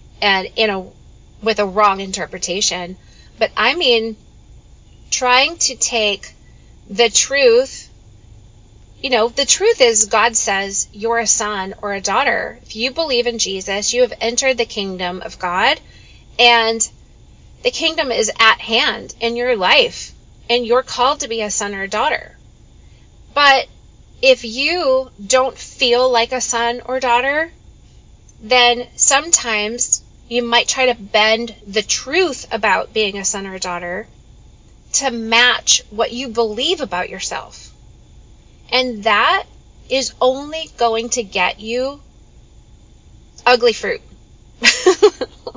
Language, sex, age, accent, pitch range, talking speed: English, female, 30-49, American, 210-260 Hz, 135 wpm